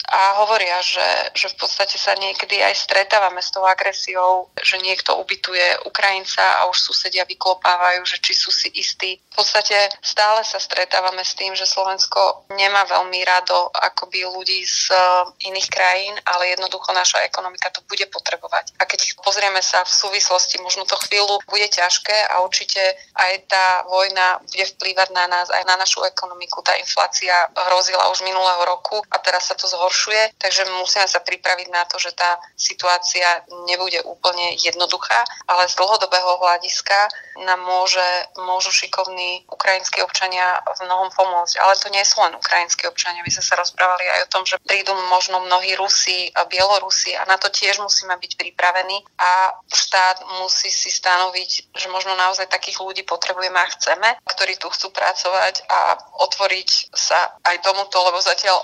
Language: Slovak